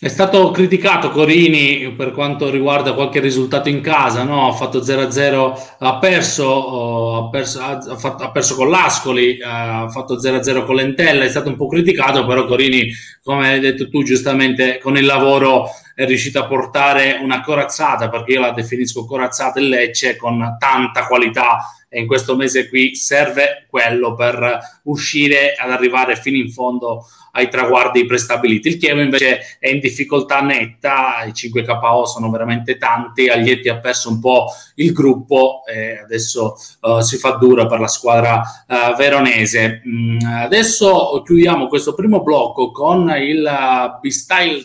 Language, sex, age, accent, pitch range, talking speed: Italian, male, 20-39, native, 125-145 Hz, 145 wpm